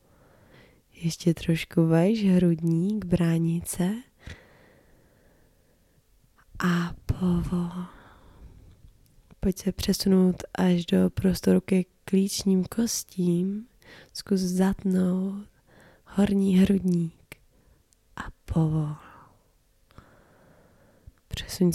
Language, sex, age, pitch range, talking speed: Czech, female, 20-39, 145-185 Hz, 65 wpm